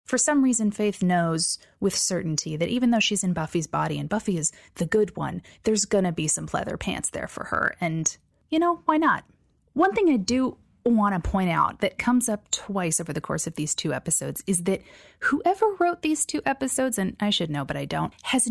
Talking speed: 225 wpm